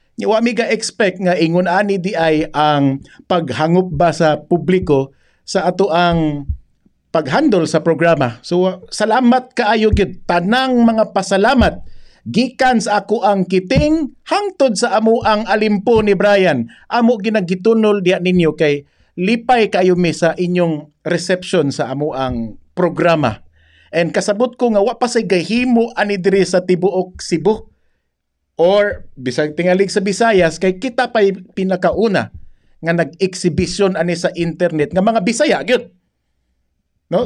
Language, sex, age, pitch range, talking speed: English, male, 50-69, 170-225 Hz, 135 wpm